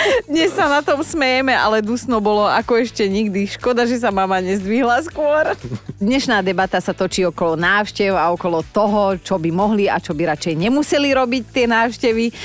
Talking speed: 180 wpm